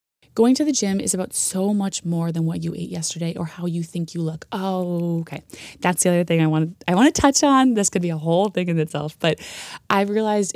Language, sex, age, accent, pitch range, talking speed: English, female, 20-39, American, 165-205 Hz, 240 wpm